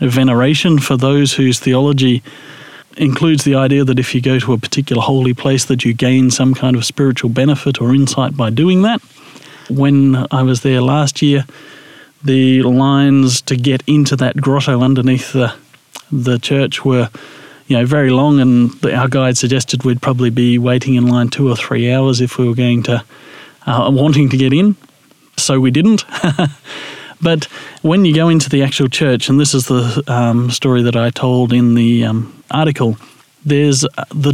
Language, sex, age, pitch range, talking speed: English, male, 40-59, 125-145 Hz, 180 wpm